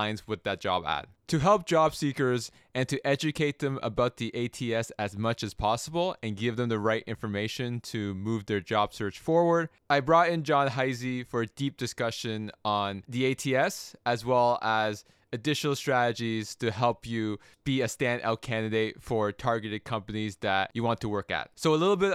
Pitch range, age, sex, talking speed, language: 115-145 Hz, 20-39, male, 185 wpm, English